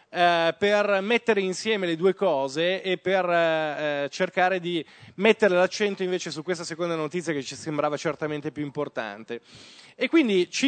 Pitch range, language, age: 170-230 Hz, Italian, 20-39